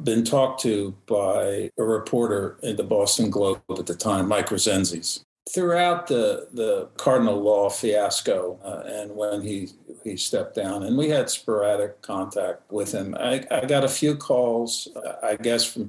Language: English